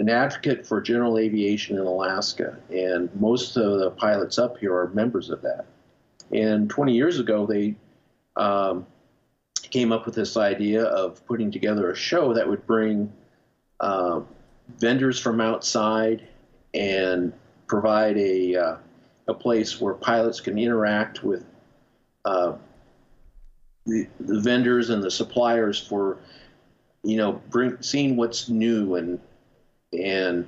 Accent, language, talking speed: American, English, 135 wpm